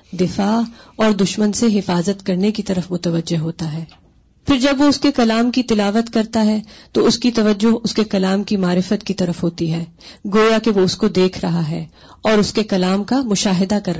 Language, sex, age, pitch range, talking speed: Urdu, female, 30-49, 185-225 Hz, 210 wpm